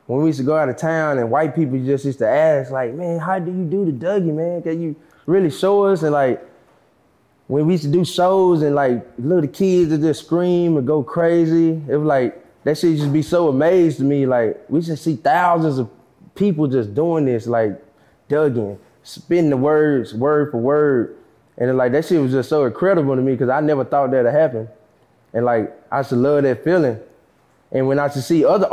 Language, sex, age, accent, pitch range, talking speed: English, male, 20-39, American, 140-180 Hz, 230 wpm